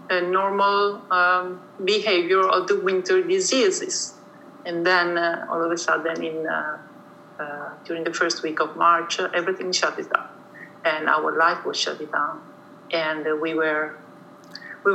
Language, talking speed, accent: English, 160 wpm, Italian